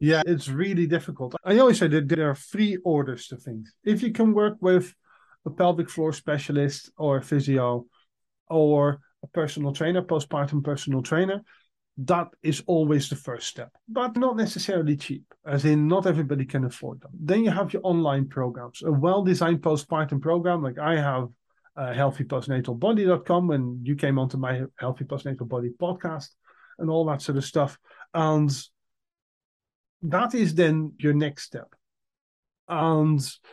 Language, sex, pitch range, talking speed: English, male, 135-170 Hz, 155 wpm